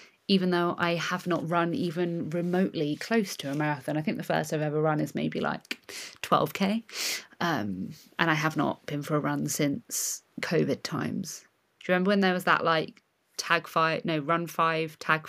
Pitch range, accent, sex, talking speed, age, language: 160-200 Hz, British, female, 190 wpm, 30-49, English